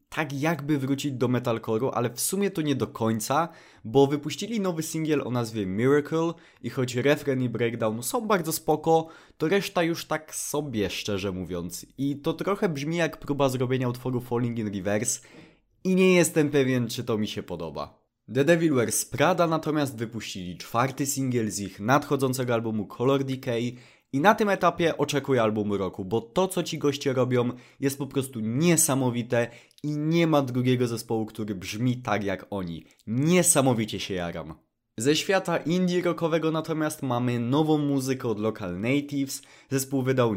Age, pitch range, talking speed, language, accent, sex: 20-39, 115-155 Hz, 165 wpm, Polish, native, male